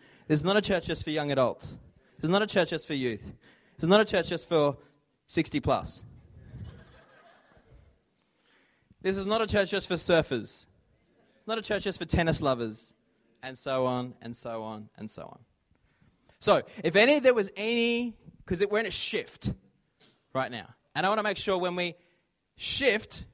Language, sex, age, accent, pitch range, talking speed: English, male, 20-39, Australian, 125-195 Hz, 190 wpm